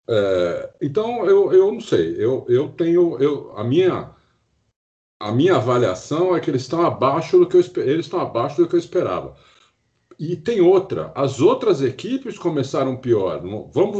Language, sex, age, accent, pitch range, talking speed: Portuguese, male, 50-69, Brazilian, 115-185 Hz, 150 wpm